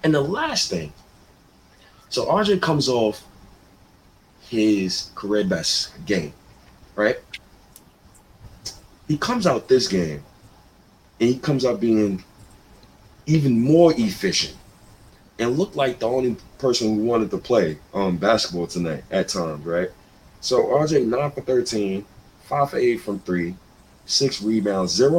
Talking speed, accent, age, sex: 130 wpm, American, 30-49, male